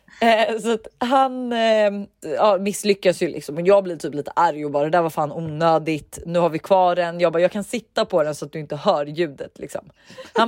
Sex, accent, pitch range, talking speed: female, native, 170-225 Hz, 225 wpm